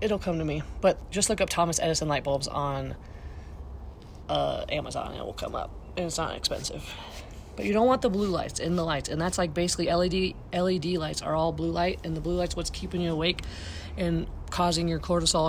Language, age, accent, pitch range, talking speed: English, 20-39, American, 140-175 Hz, 220 wpm